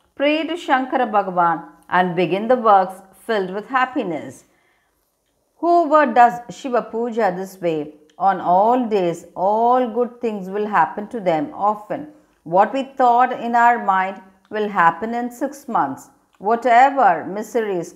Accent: native